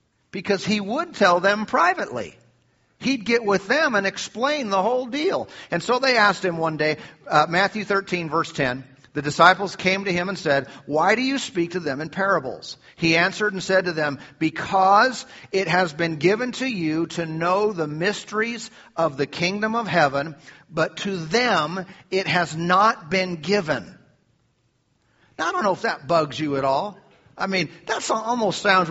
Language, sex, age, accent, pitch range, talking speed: English, male, 50-69, American, 165-220 Hz, 180 wpm